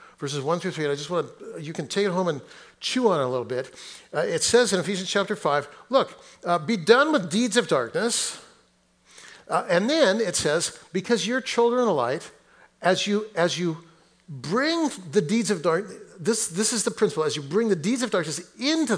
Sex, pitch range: male, 180-245 Hz